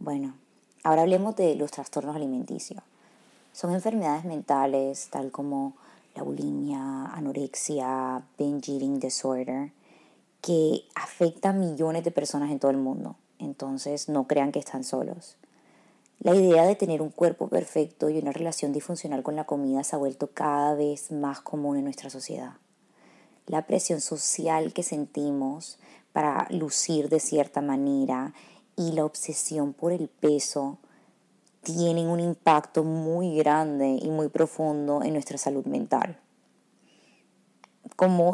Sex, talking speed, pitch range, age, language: female, 135 wpm, 145-170 Hz, 20-39, Spanish